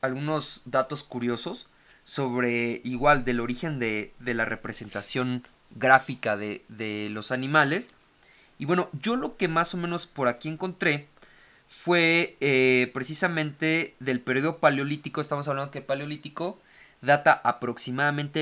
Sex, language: male, Spanish